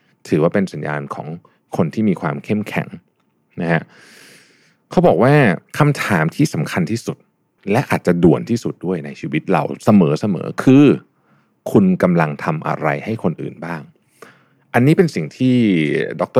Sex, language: male, Thai